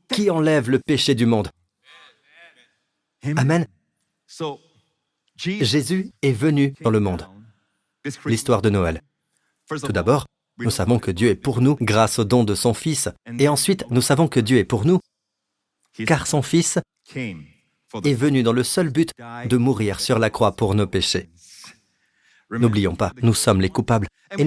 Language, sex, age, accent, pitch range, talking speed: French, male, 40-59, French, 115-160 Hz, 155 wpm